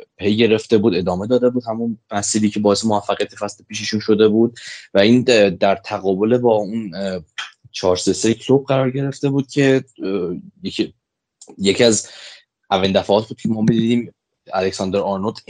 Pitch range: 95-115 Hz